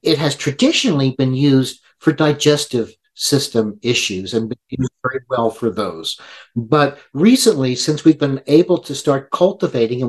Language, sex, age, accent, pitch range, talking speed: English, male, 50-69, American, 125-160 Hz, 155 wpm